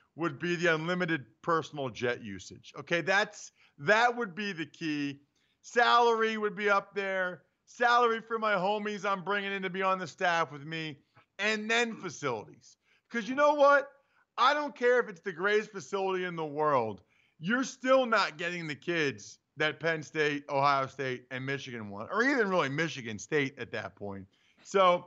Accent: American